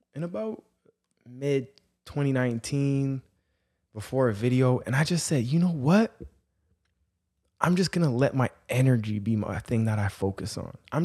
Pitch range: 115-155 Hz